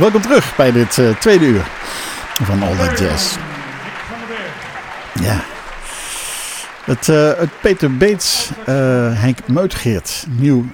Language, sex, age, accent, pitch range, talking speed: Dutch, male, 60-79, Dutch, 95-125 Hz, 115 wpm